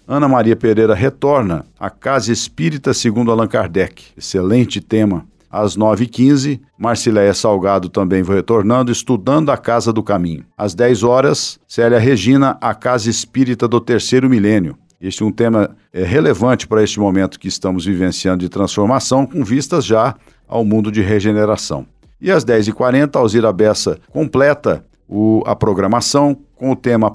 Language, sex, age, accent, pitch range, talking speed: Portuguese, male, 50-69, Brazilian, 105-130 Hz, 150 wpm